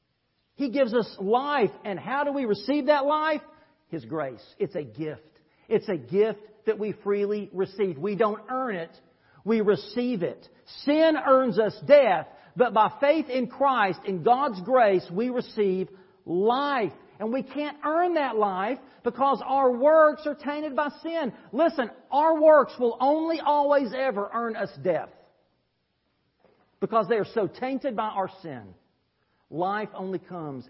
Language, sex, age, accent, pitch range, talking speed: English, male, 50-69, American, 190-275 Hz, 155 wpm